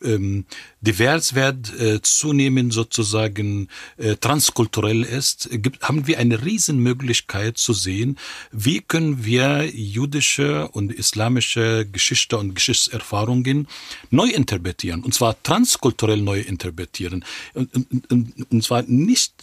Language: German